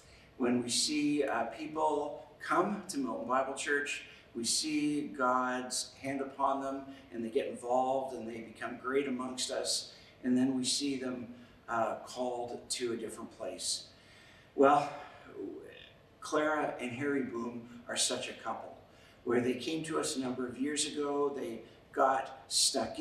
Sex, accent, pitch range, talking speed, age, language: male, American, 125-155 Hz, 155 wpm, 50-69, English